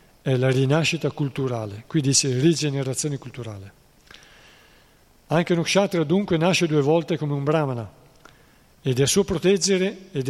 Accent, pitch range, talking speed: native, 140-165 Hz, 130 wpm